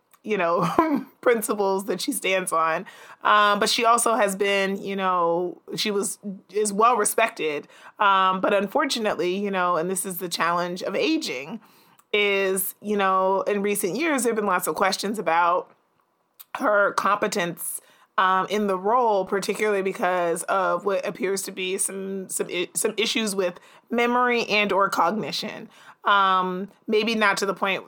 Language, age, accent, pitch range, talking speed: English, 30-49, American, 185-215 Hz, 155 wpm